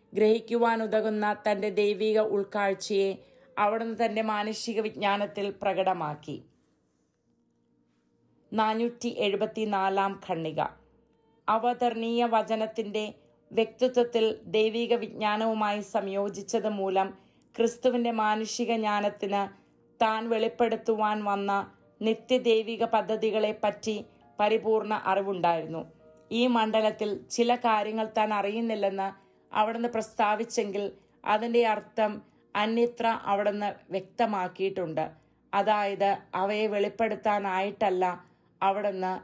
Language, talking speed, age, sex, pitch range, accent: English, 70 wpm, 30-49, female, 195-220 Hz, Indian